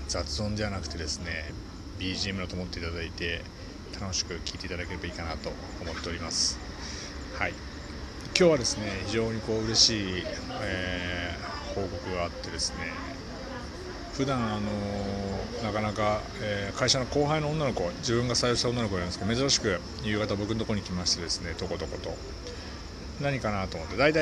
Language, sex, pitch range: Japanese, male, 85-110 Hz